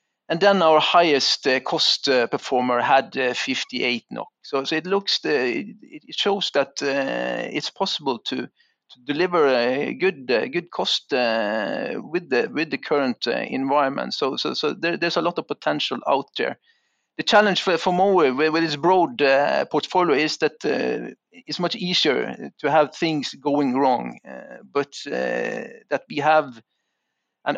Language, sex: English, male